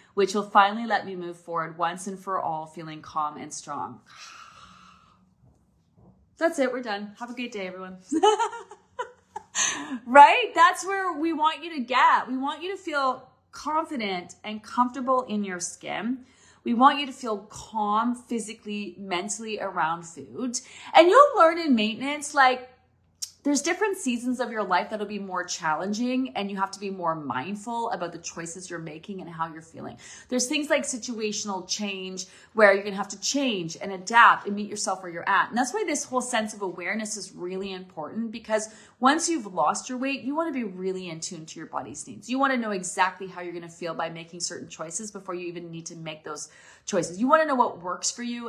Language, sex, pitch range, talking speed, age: English, female, 185-255 Hz, 205 wpm, 30-49